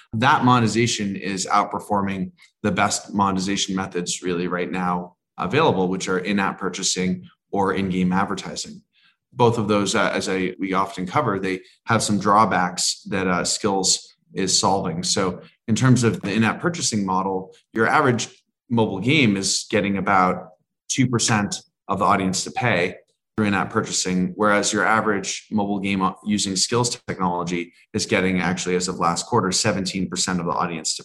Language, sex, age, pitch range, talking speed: English, male, 20-39, 90-110 Hz, 155 wpm